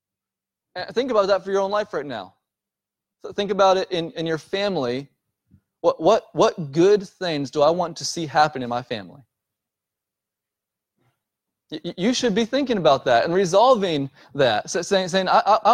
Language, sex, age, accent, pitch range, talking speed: English, male, 20-39, American, 180-230 Hz, 170 wpm